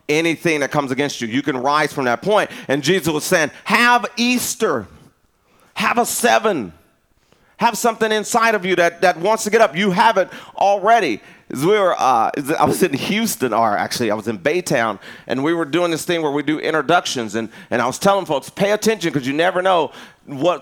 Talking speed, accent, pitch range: 210 wpm, American, 135-195 Hz